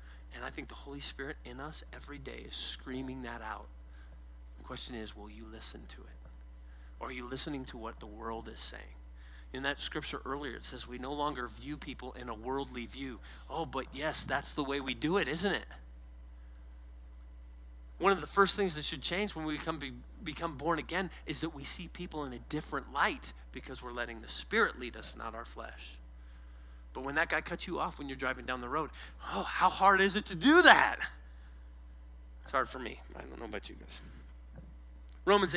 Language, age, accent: English, 30-49, American